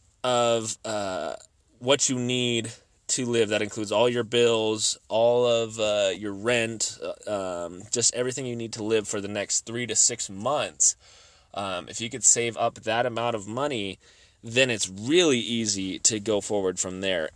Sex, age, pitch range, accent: male, 20-39, 100-120 Hz, American